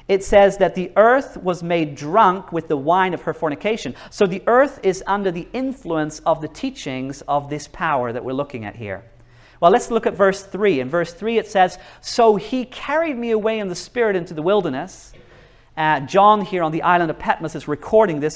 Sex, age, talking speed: male, 40-59, 215 wpm